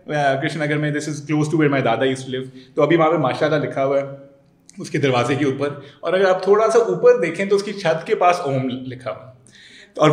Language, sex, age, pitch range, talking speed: Urdu, male, 20-39, 135-185 Hz, 235 wpm